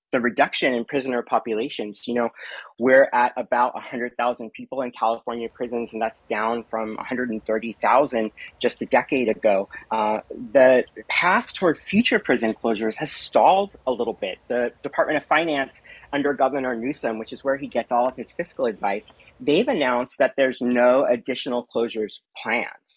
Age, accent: 30-49, American